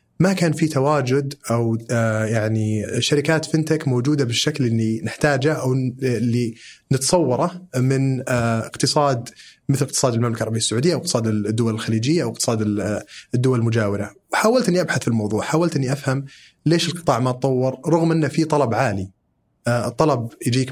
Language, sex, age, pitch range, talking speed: Arabic, male, 30-49, 115-150 Hz, 135 wpm